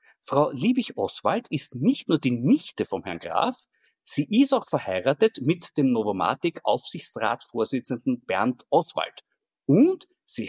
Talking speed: 120 wpm